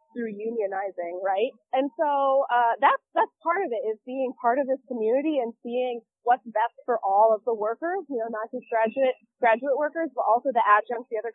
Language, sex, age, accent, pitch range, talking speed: English, female, 20-39, American, 210-265 Hz, 205 wpm